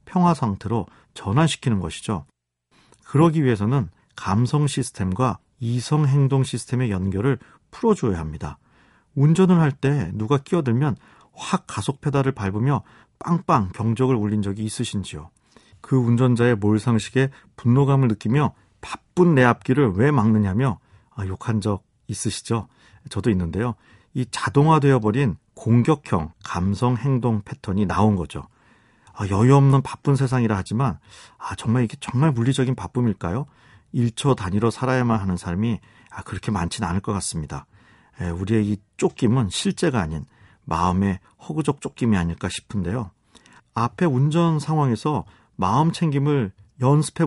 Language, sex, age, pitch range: Korean, male, 40-59, 100-135 Hz